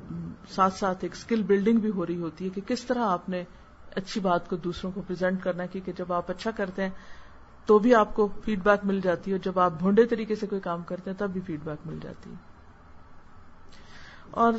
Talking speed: 220 wpm